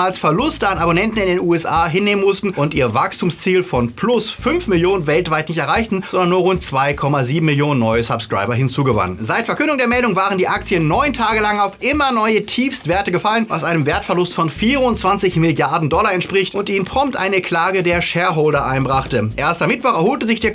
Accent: German